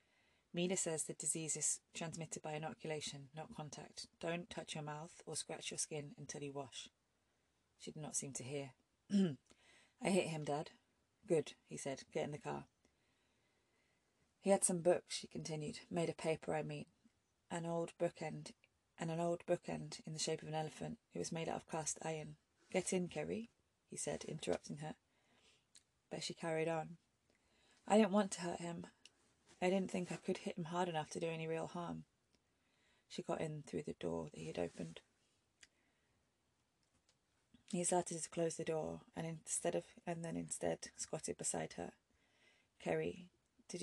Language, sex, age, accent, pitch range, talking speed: English, female, 20-39, British, 145-175 Hz, 175 wpm